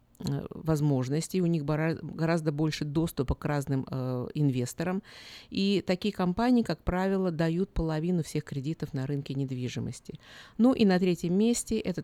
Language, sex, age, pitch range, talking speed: Russian, female, 50-69, 150-185 Hz, 140 wpm